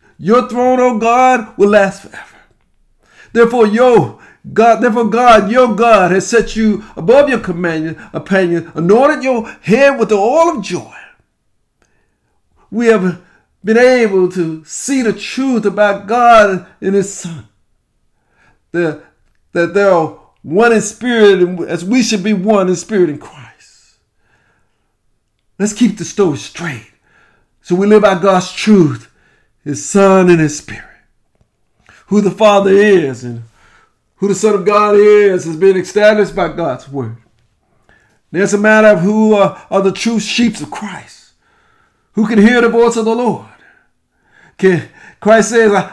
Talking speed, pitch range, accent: 150 wpm, 180-225 Hz, American